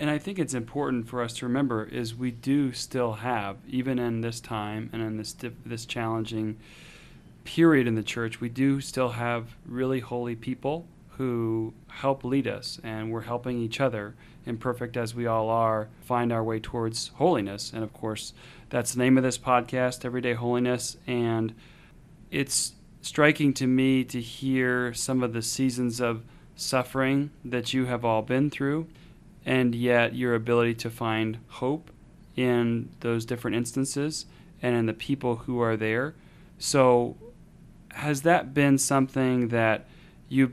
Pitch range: 115-130 Hz